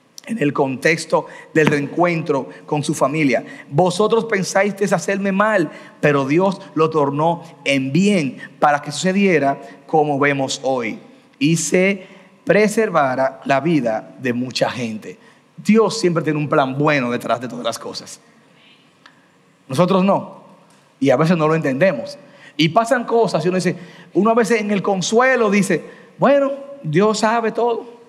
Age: 40-59